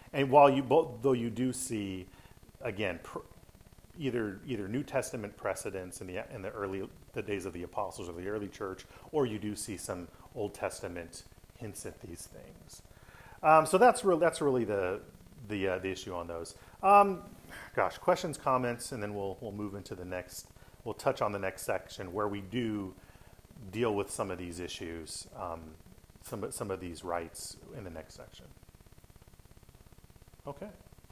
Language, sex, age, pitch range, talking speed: English, male, 40-59, 95-140 Hz, 175 wpm